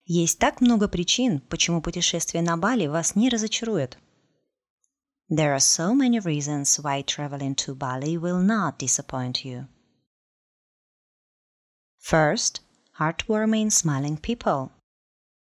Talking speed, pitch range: 90 wpm, 150-210 Hz